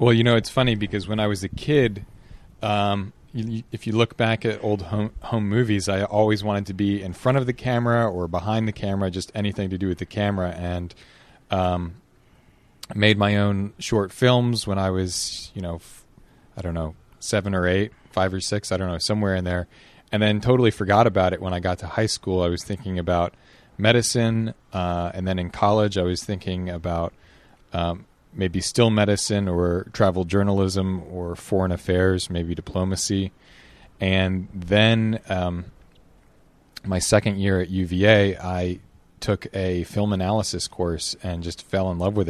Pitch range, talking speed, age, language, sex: 90-105 Hz, 180 wpm, 30-49, English, male